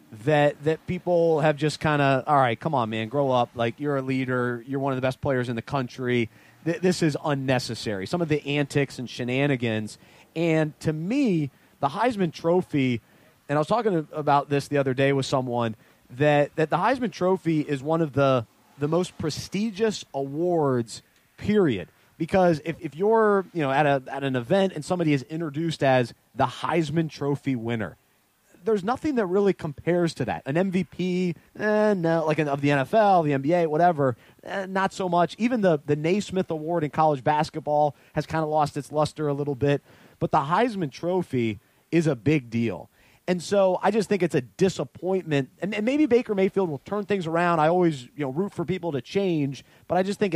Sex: male